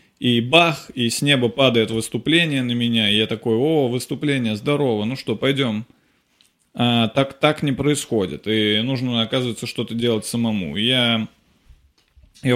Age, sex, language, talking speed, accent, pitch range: 20-39, male, Russian, 150 wpm, native, 115-135 Hz